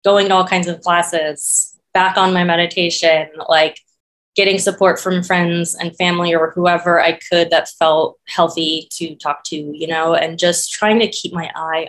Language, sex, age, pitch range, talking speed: English, female, 20-39, 160-190 Hz, 180 wpm